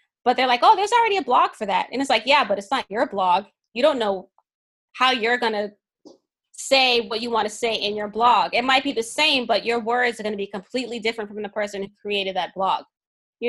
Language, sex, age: English, female, 20-39